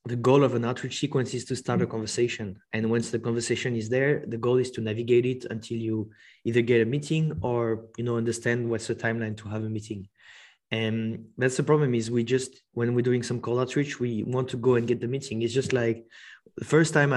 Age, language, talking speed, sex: 20-39, English, 235 wpm, male